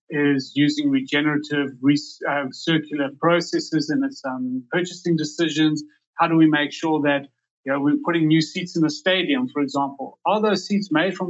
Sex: male